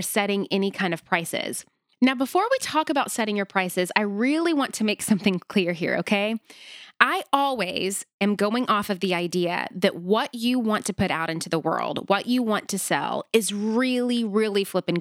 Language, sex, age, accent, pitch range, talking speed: English, female, 20-39, American, 180-220 Hz, 195 wpm